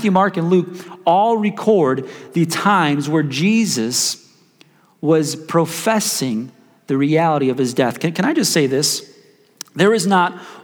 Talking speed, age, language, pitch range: 140 wpm, 40-59, English, 135-185 Hz